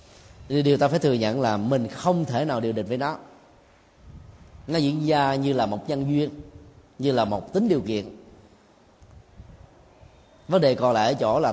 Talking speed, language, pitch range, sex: 180 wpm, Vietnamese, 115-155 Hz, male